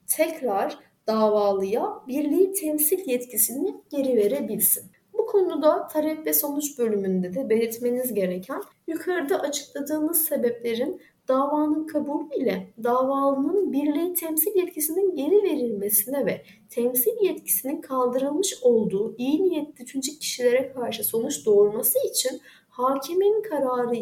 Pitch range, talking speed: 240-320 Hz, 105 wpm